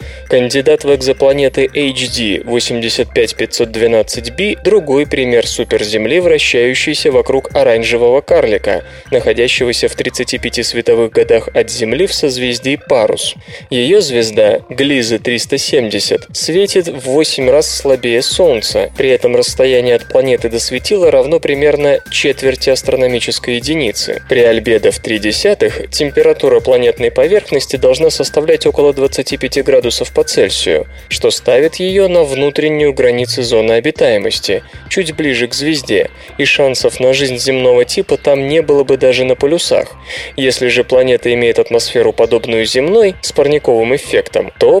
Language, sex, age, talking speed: Russian, male, 20-39, 130 wpm